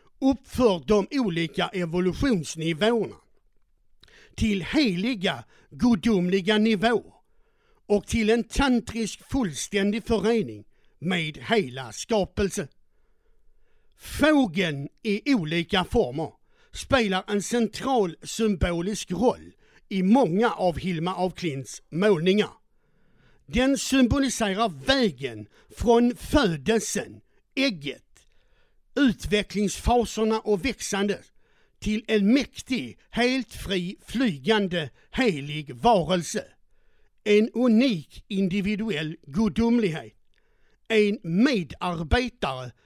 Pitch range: 185-245 Hz